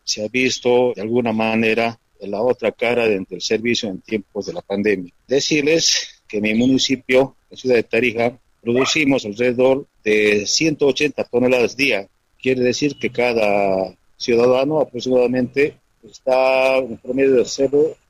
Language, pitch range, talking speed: Spanish, 110-145 Hz, 145 wpm